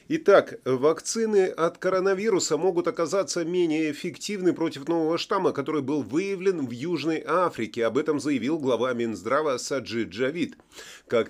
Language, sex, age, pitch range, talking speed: Russian, male, 30-49, 145-195 Hz, 135 wpm